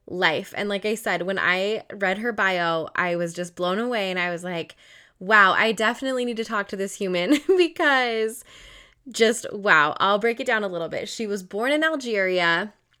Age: 10-29